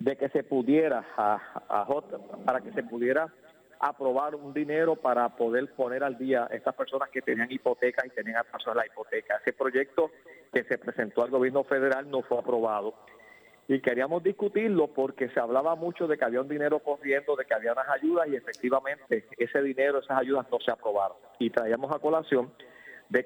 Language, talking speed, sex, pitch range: Spanish, 190 wpm, male, 125-145 Hz